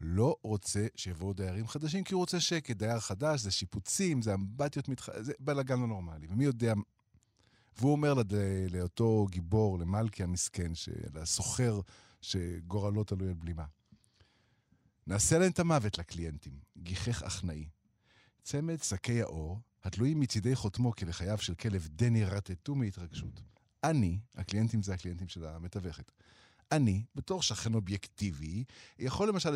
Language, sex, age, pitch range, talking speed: Hebrew, male, 50-69, 100-145 Hz, 135 wpm